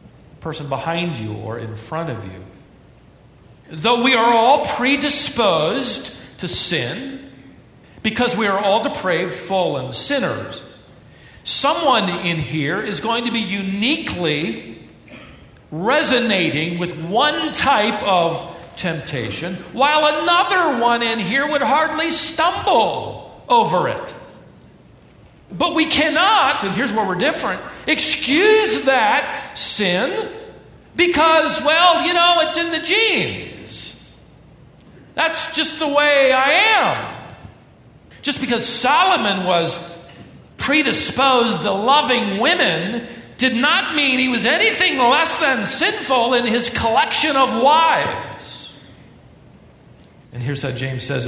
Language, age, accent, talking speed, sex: English, 50-69, American, 115 wpm, male